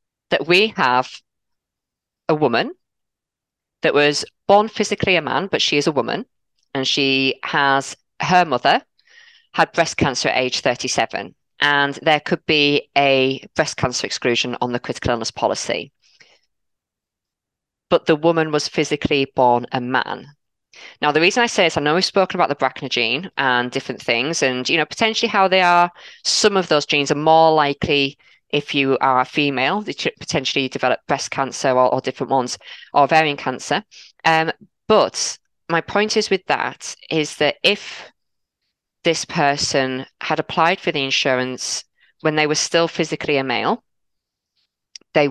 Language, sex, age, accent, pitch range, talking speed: English, female, 20-39, British, 130-160 Hz, 160 wpm